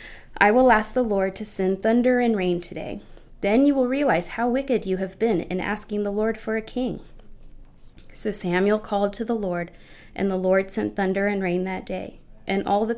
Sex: female